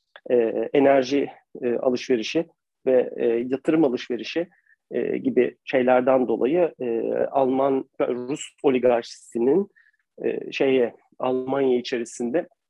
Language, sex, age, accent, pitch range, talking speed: Turkish, male, 40-59, native, 125-180 Hz, 95 wpm